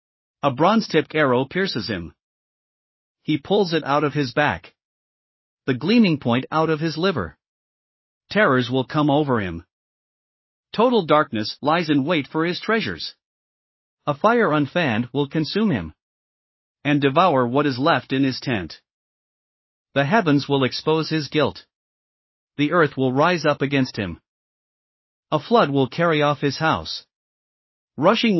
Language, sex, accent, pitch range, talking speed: English, male, American, 130-175 Hz, 140 wpm